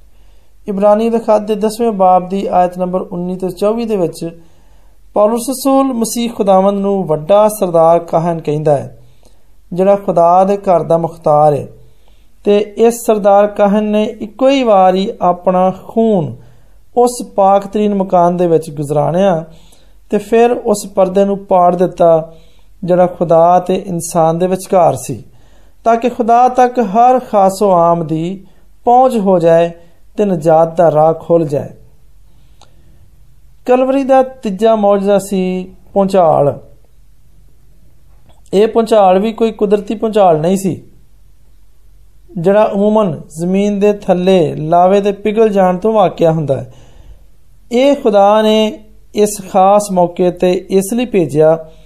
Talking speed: 60 wpm